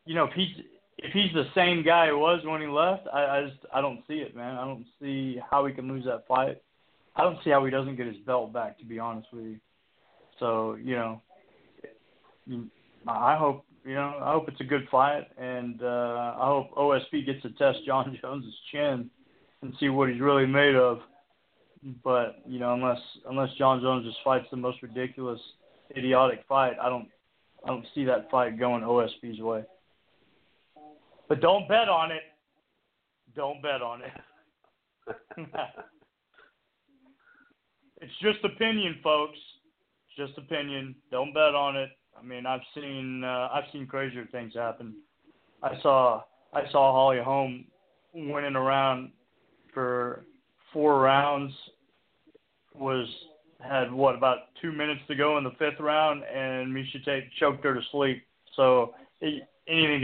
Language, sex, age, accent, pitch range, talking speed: English, male, 20-39, American, 125-150 Hz, 165 wpm